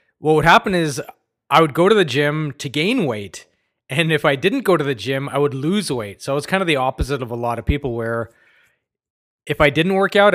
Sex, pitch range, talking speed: male, 130-165 Hz, 245 wpm